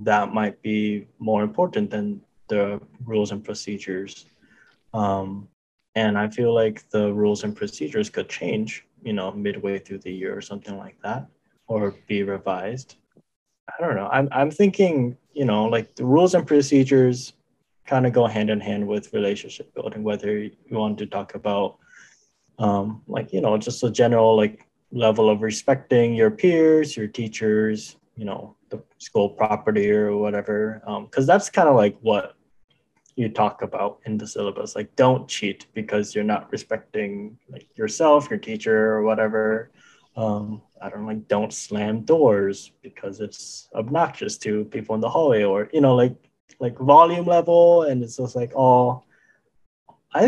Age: 20-39